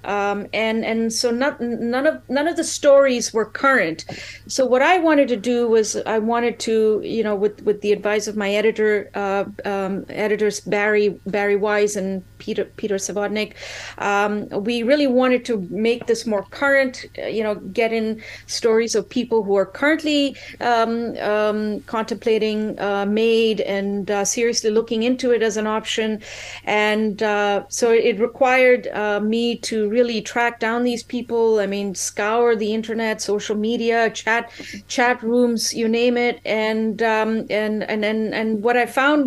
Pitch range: 210-245 Hz